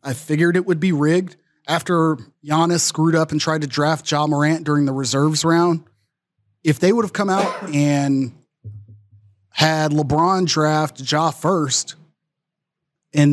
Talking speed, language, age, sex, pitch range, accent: 150 wpm, English, 30-49, male, 135-165 Hz, American